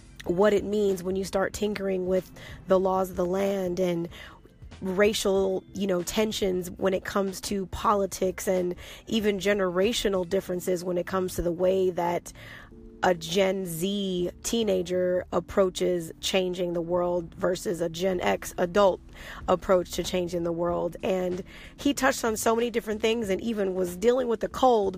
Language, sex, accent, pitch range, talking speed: English, female, American, 180-205 Hz, 160 wpm